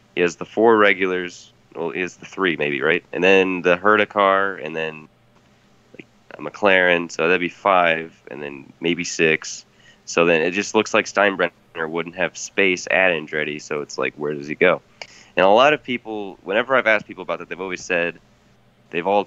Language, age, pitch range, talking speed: English, 20-39, 80-100 Hz, 200 wpm